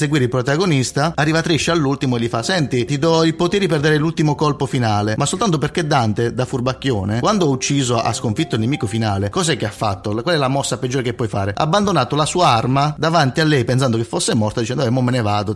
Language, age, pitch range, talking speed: Italian, 30-49, 115-145 Hz, 245 wpm